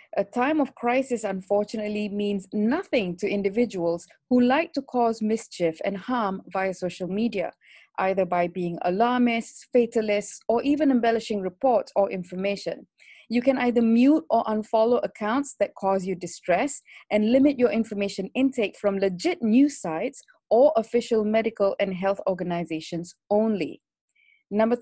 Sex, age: female, 20-39